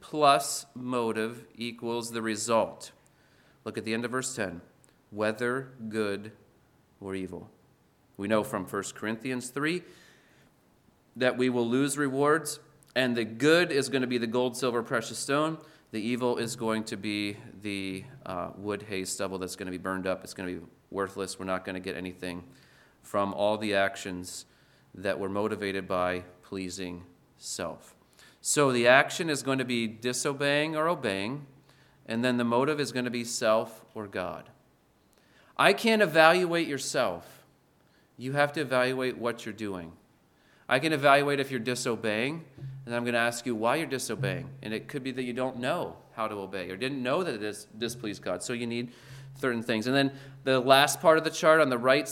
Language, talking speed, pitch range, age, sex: English, 180 wpm, 105-135 Hz, 30-49, male